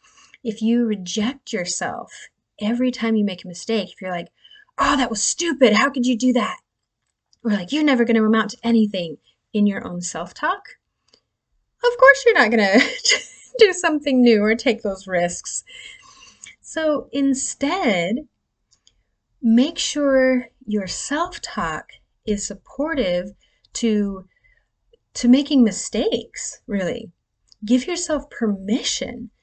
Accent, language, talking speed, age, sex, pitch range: American, English, 125 wpm, 30-49, female, 205-275 Hz